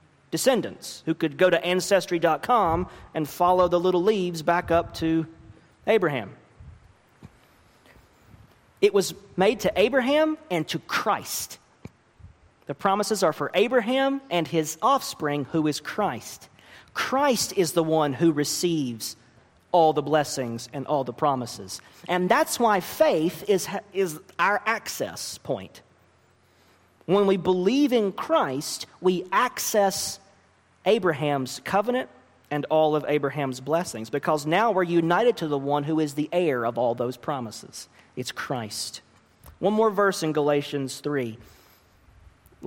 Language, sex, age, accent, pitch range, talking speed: English, male, 40-59, American, 145-195 Hz, 130 wpm